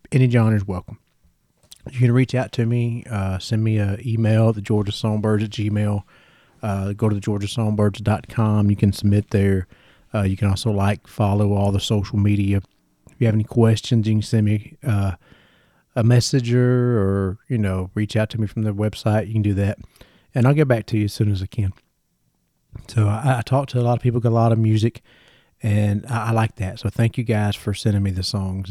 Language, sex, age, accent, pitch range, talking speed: English, male, 30-49, American, 105-120 Hz, 215 wpm